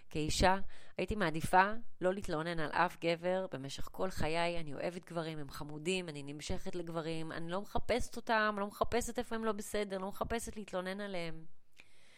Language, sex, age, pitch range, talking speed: Hebrew, female, 30-49, 130-170 Hz, 165 wpm